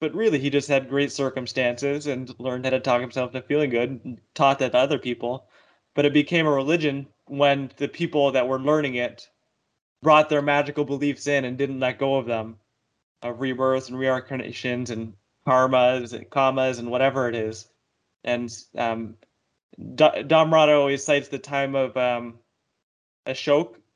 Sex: male